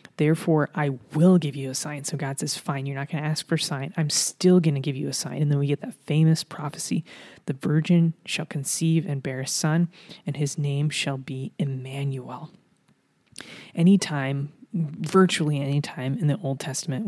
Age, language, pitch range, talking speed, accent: 20-39, English, 140-165 Hz, 195 wpm, American